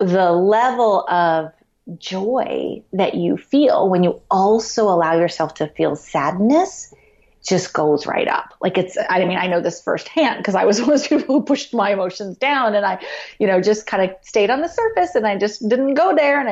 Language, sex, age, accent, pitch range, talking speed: English, female, 30-49, American, 195-295 Hz, 205 wpm